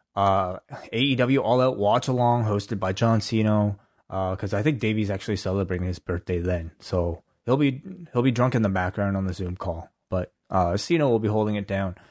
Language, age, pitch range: English, 20-39, 100-125 Hz